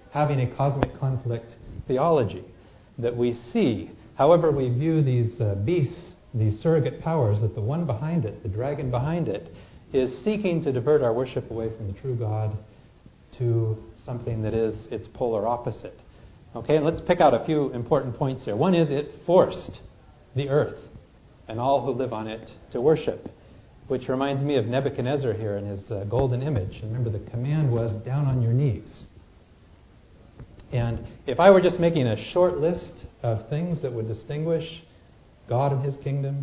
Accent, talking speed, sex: American, 175 wpm, male